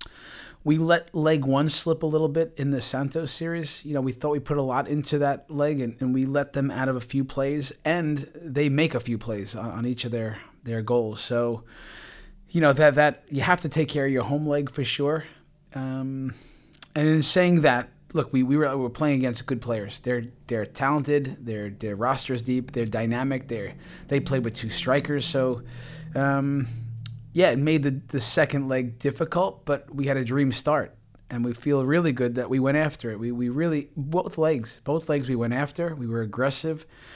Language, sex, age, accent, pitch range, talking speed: English, male, 30-49, American, 120-145 Hz, 215 wpm